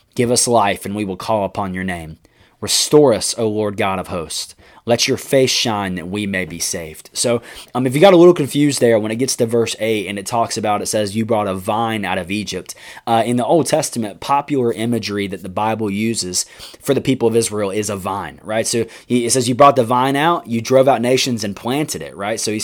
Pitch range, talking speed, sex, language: 105-130 Hz, 245 wpm, male, English